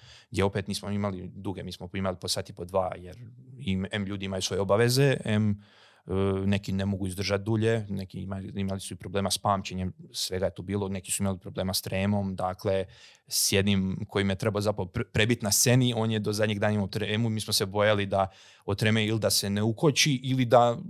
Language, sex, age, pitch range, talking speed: Croatian, male, 30-49, 100-115 Hz, 220 wpm